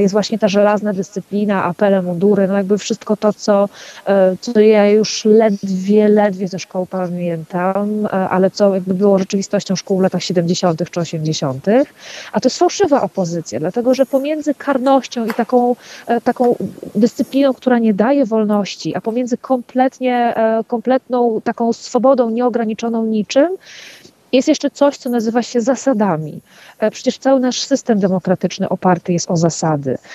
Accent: native